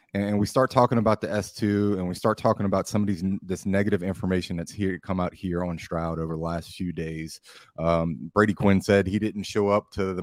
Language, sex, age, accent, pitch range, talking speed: English, male, 30-49, American, 85-110 Hz, 235 wpm